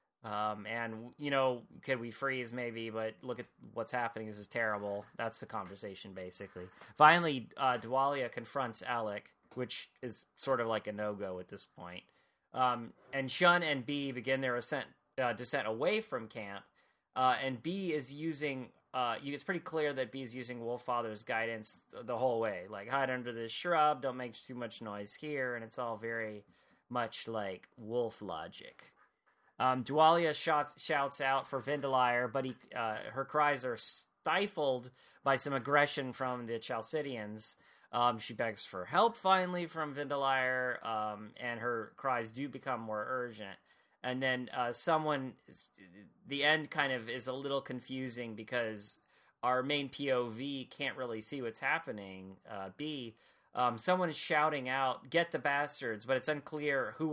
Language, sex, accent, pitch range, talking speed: English, male, American, 115-140 Hz, 165 wpm